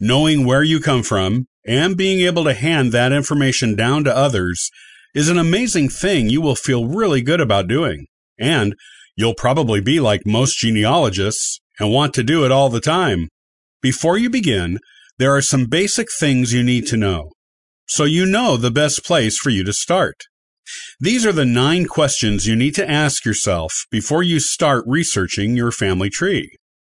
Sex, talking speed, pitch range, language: male, 180 wpm, 105-150 Hz, English